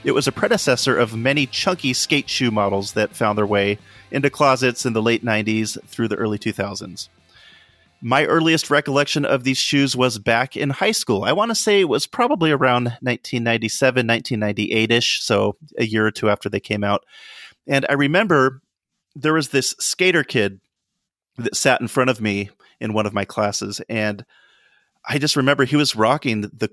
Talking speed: 180 wpm